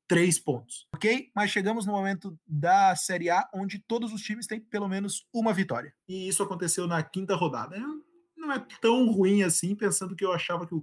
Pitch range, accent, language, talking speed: 175-220 Hz, Brazilian, Portuguese, 200 wpm